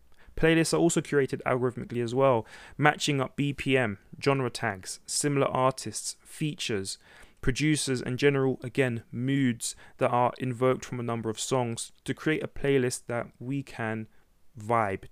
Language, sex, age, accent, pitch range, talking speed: English, male, 20-39, British, 115-140 Hz, 145 wpm